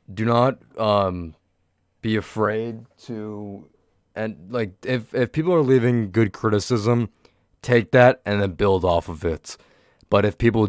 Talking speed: 145 wpm